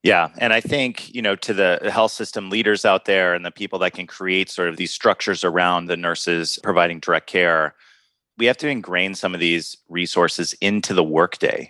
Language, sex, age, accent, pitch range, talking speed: English, male, 30-49, American, 85-100 Hz, 205 wpm